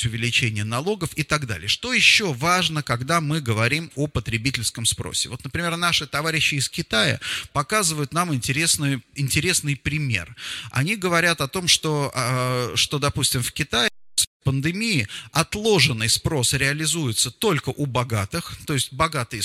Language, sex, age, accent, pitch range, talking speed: Russian, male, 30-49, native, 125-155 Hz, 140 wpm